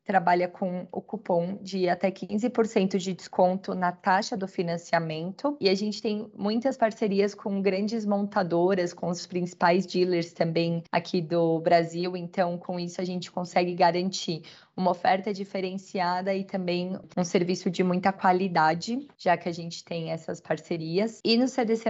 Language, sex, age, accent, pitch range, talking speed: Portuguese, female, 20-39, Brazilian, 175-200 Hz, 155 wpm